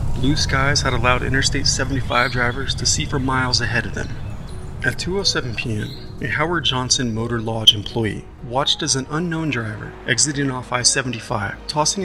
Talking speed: 160 wpm